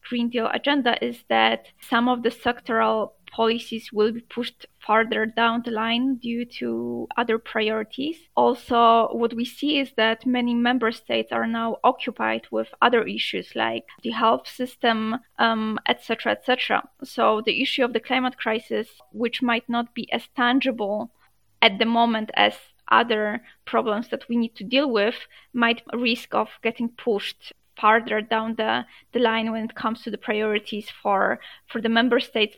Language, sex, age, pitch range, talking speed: Polish, female, 20-39, 220-245 Hz, 165 wpm